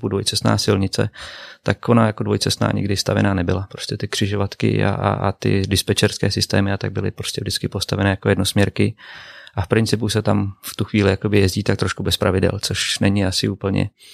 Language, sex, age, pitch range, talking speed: Czech, male, 30-49, 95-110 Hz, 185 wpm